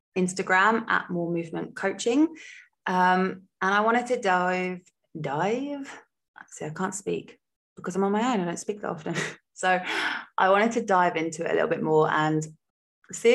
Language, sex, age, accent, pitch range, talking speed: English, female, 20-39, British, 155-195 Hz, 175 wpm